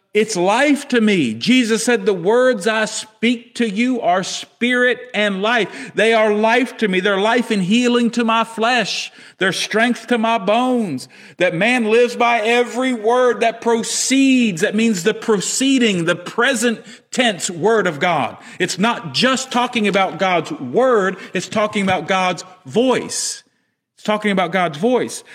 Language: English